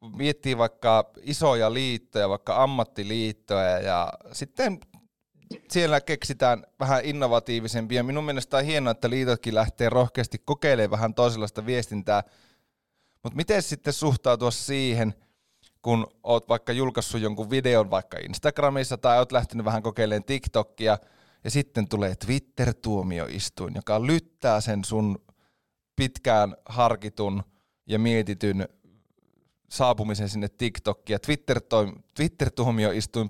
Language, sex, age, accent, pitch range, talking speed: Finnish, male, 30-49, native, 105-130 Hz, 110 wpm